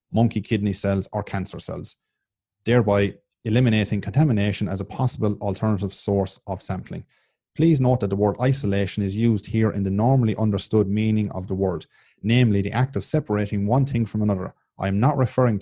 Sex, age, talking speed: male, 30-49, 175 wpm